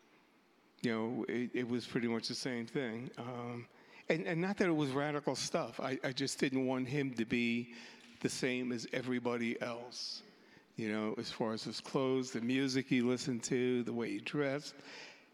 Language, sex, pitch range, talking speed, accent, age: English, male, 115-140 Hz, 190 wpm, American, 60-79